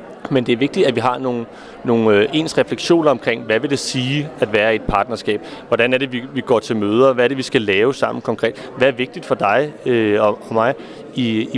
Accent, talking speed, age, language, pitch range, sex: native, 235 wpm, 30-49, Danish, 115-145 Hz, male